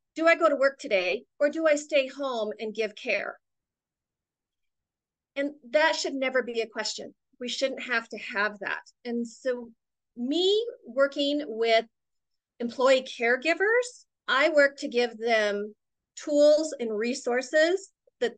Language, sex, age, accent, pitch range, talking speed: English, female, 40-59, American, 220-295 Hz, 140 wpm